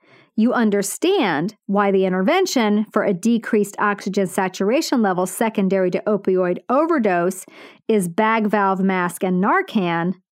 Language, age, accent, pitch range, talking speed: English, 40-59, American, 190-255 Hz, 120 wpm